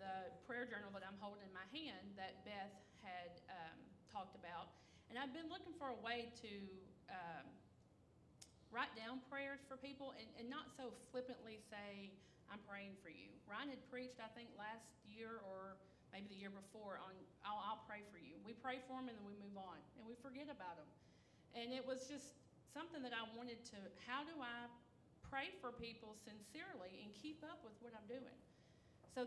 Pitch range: 215-270 Hz